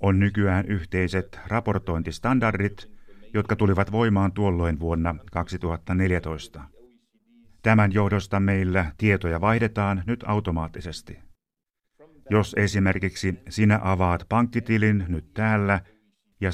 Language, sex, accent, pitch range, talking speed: Finnish, male, native, 90-110 Hz, 90 wpm